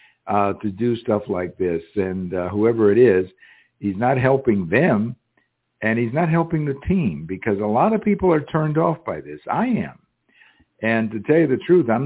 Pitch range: 100-135 Hz